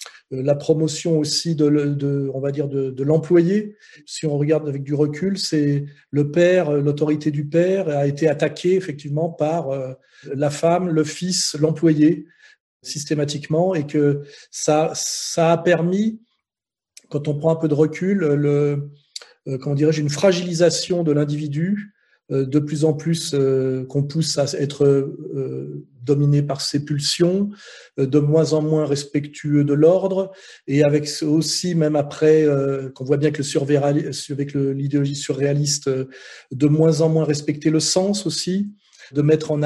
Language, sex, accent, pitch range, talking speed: French, male, French, 145-170 Hz, 150 wpm